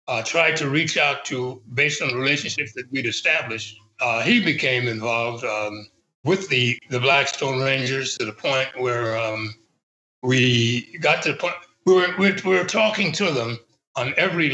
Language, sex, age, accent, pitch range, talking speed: English, male, 60-79, American, 115-150 Hz, 175 wpm